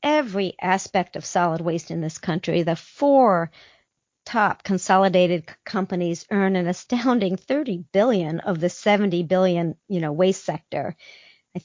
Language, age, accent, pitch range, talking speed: English, 50-69, American, 185-220 Hz, 140 wpm